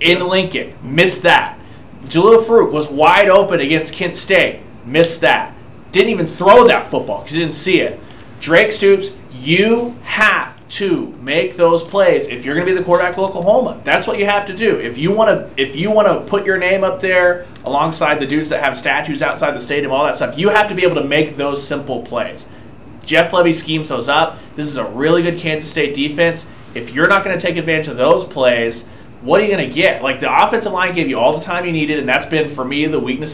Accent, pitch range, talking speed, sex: American, 145-180 Hz, 225 wpm, male